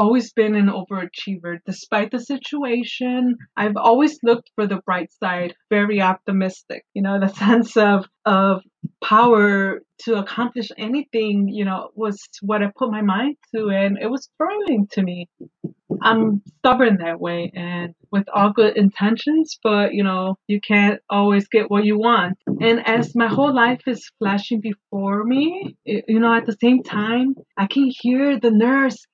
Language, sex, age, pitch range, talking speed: English, female, 20-39, 195-235 Hz, 165 wpm